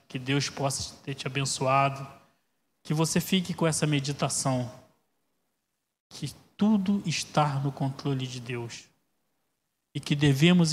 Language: Portuguese